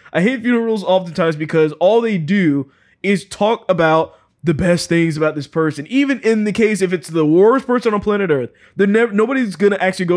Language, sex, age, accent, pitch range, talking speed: English, male, 20-39, American, 155-205 Hz, 205 wpm